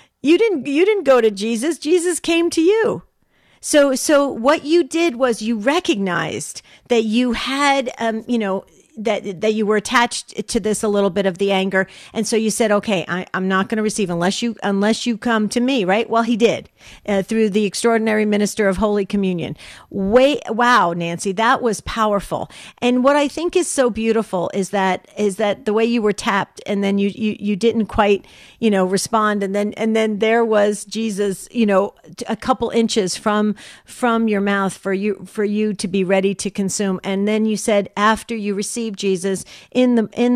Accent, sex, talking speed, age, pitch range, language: American, female, 200 wpm, 50-69, 190-230 Hz, English